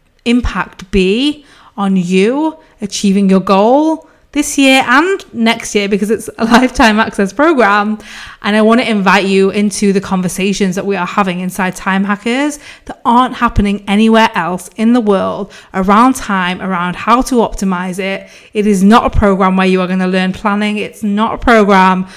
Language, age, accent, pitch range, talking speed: English, 20-39, British, 195-235 Hz, 175 wpm